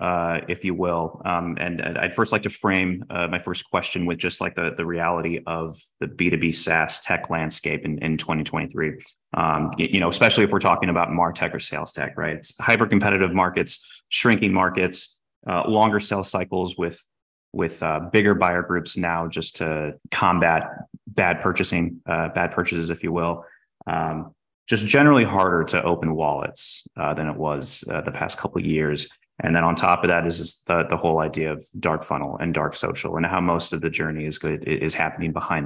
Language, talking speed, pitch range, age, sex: English, 195 wpm, 85-95 Hz, 30-49, male